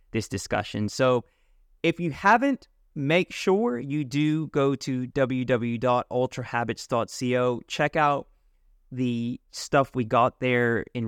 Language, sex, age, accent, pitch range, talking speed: English, male, 30-49, American, 110-130 Hz, 115 wpm